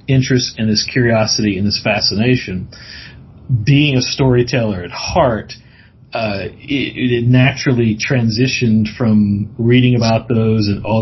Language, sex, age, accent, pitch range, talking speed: English, male, 40-59, American, 110-130 Hz, 125 wpm